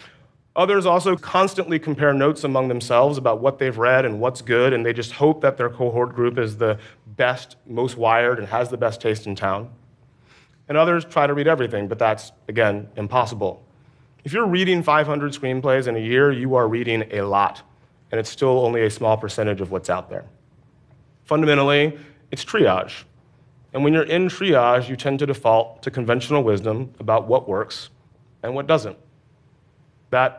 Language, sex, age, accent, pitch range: Korean, male, 30-49, American, 120-140 Hz